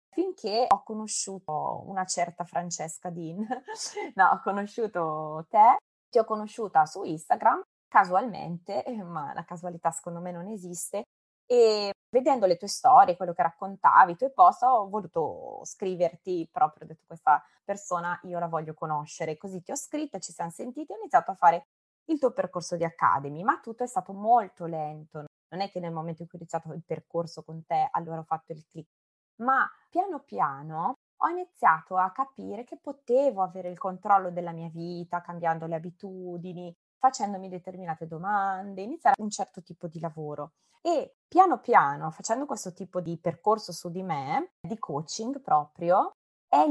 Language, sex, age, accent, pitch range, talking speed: Italian, female, 20-39, native, 170-235 Hz, 170 wpm